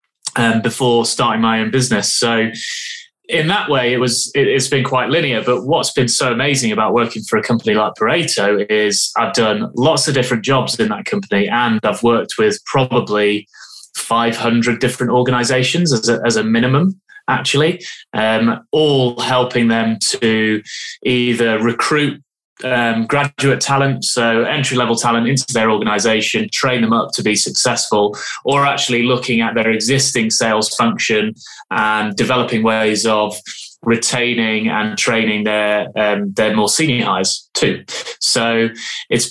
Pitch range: 110-135 Hz